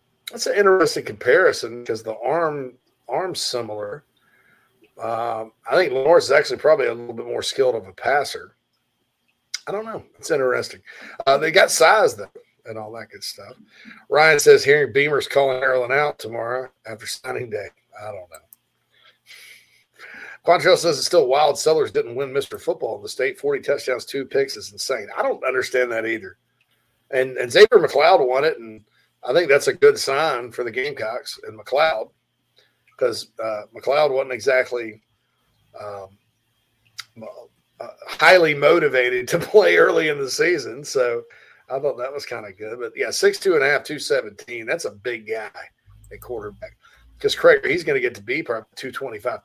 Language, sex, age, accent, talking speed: English, male, 40-59, American, 175 wpm